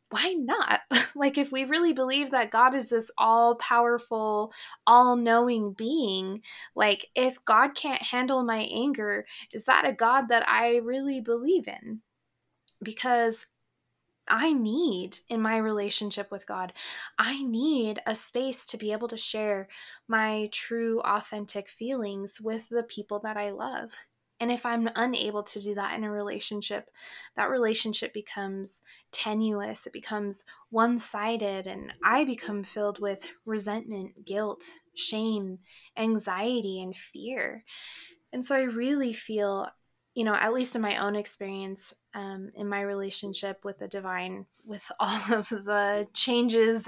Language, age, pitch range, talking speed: English, 20-39, 205-240 Hz, 140 wpm